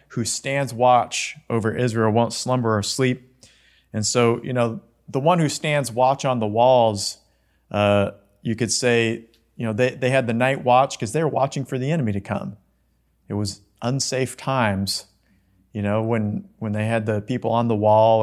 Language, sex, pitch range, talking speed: English, male, 105-125 Hz, 190 wpm